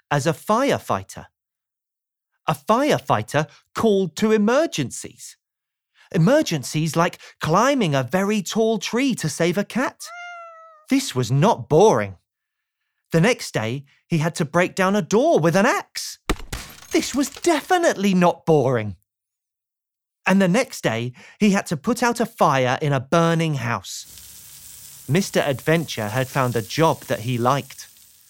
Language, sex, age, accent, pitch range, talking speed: English, male, 30-49, British, 130-210 Hz, 140 wpm